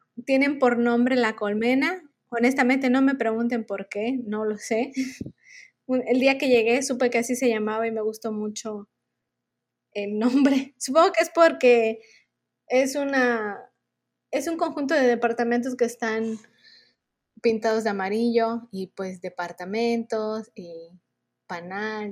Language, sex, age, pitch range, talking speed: Spanish, female, 20-39, 210-255 Hz, 135 wpm